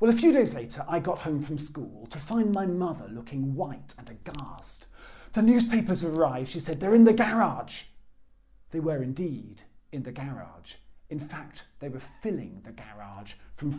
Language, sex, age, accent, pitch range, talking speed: English, male, 40-59, British, 115-175 Hz, 180 wpm